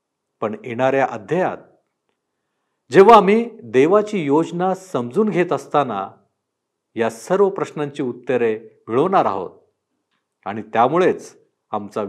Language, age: Marathi, 50-69